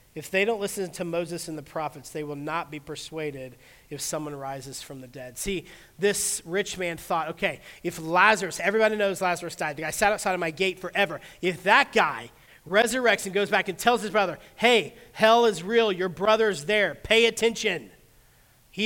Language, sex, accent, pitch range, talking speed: English, male, American, 135-180 Hz, 195 wpm